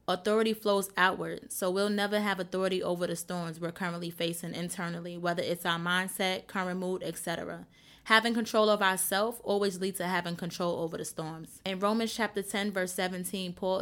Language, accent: English, American